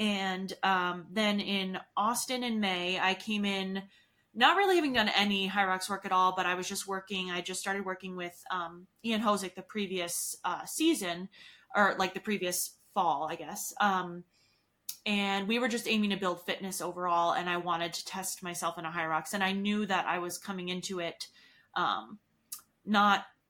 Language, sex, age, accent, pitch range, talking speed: English, female, 20-39, American, 180-205 Hz, 190 wpm